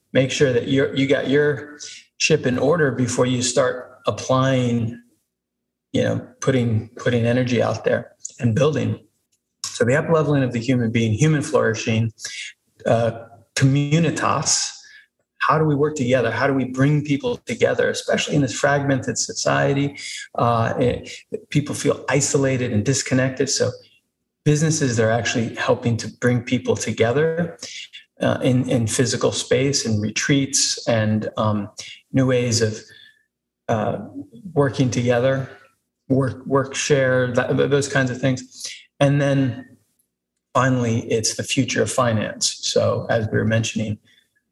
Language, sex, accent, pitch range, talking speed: English, male, American, 115-140 Hz, 135 wpm